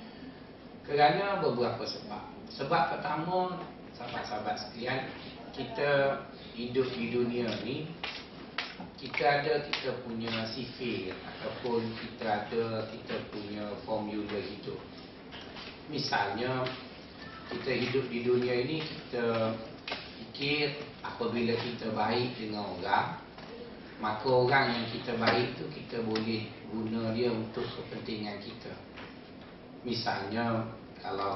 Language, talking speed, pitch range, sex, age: Malay, 100 wpm, 110-135 Hz, male, 40-59